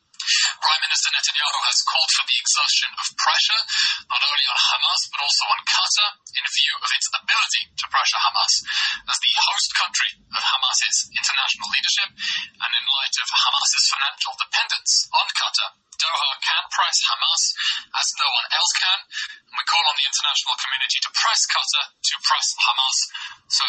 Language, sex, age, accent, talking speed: English, male, 20-39, British, 165 wpm